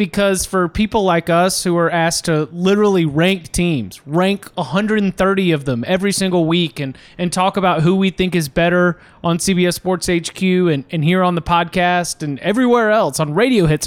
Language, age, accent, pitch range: English, 20-39, American, 170-205 Hz